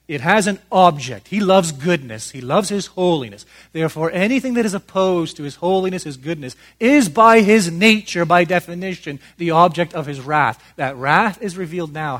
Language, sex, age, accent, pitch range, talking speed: English, male, 40-59, American, 120-165 Hz, 180 wpm